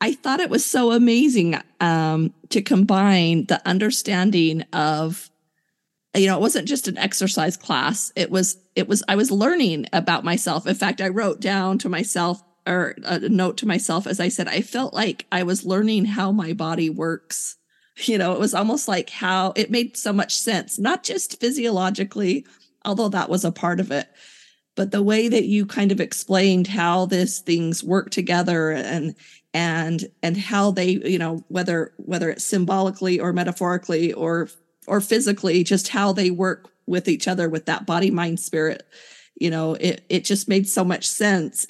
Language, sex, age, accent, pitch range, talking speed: English, female, 40-59, American, 170-205 Hz, 180 wpm